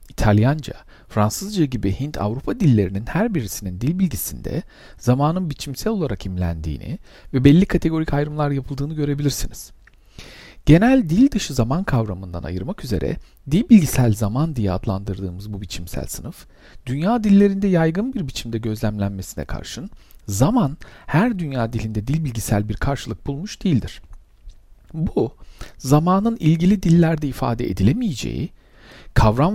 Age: 50-69